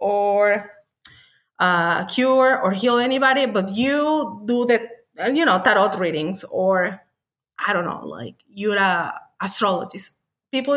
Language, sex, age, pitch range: English, female, 30-49, 205-270 Hz